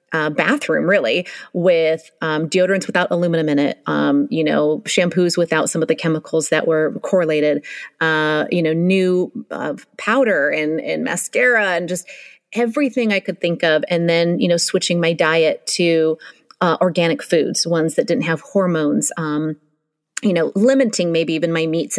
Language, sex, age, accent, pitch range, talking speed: English, female, 30-49, American, 160-195 Hz, 170 wpm